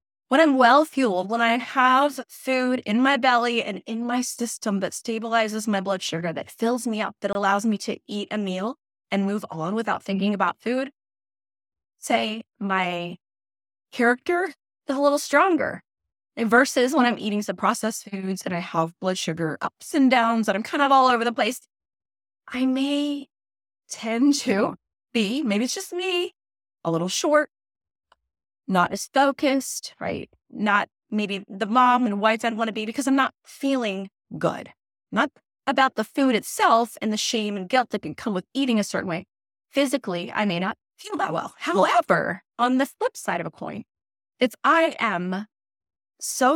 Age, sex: 20-39, female